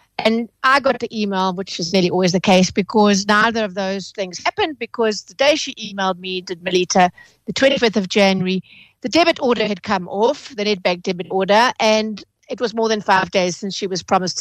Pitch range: 200-275 Hz